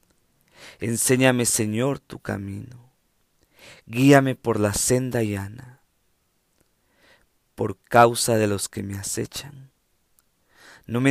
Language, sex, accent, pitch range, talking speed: Spanish, male, Mexican, 105-125 Hz, 95 wpm